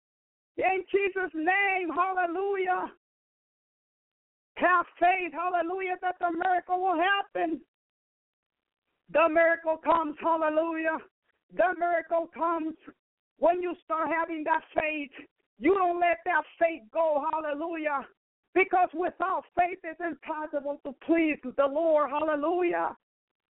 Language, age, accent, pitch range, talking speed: English, 50-69, American, 320-350 Hz, 105 wpm